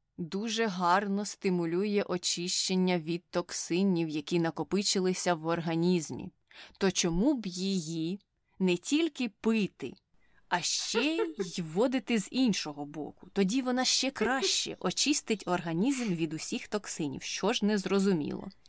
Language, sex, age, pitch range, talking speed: Ukrainian, female, 20-39, 175-210 Hz, 120 wpm